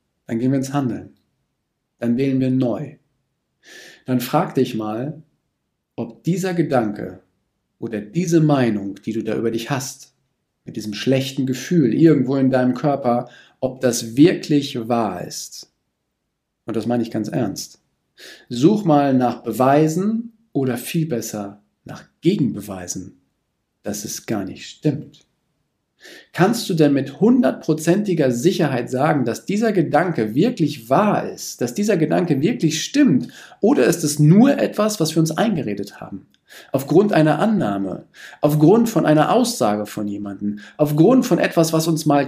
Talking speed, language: 145 wpm, German